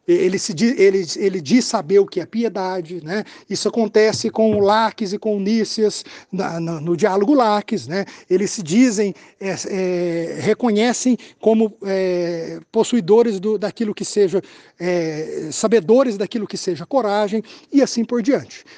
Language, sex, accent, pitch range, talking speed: Portuguese, male, Brazilian, 195-275 Hz, 155 wpm